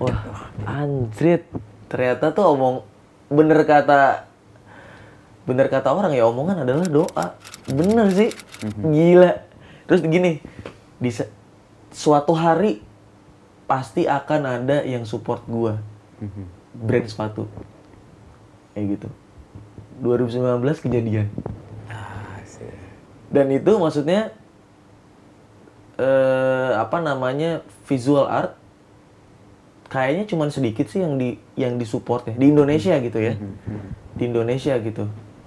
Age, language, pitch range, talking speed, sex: 20-39, Indonesian, 110-150 Hz, 100 wpm, male